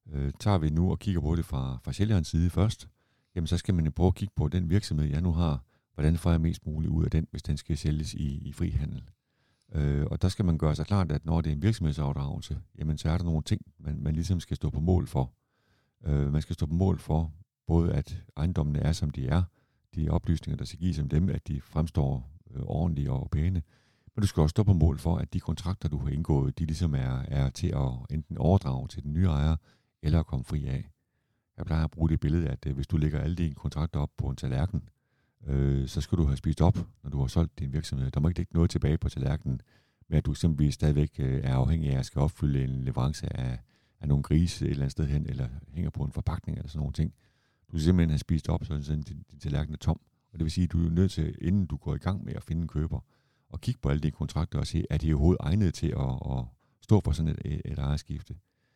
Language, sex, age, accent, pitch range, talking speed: Danish, male, 50-69, native, 75-90 Hz, 255 wpm